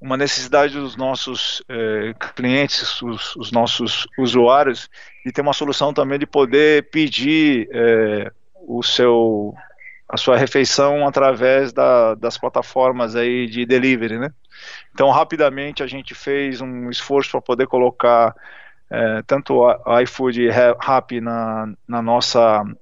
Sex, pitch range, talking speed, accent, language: male, 115-140 Hz, 120 wpm, Brazilian, Portuguese